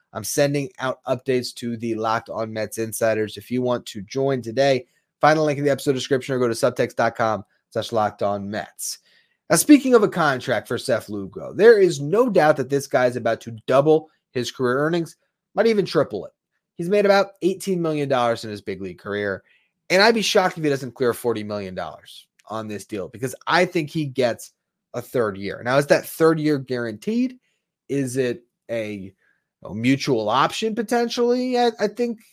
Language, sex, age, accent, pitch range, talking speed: English, male, 30-49, American, 120-180 Hz, 190 wpm